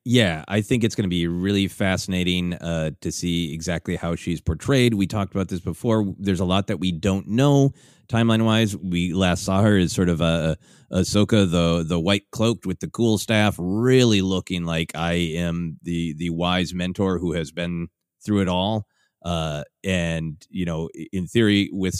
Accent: American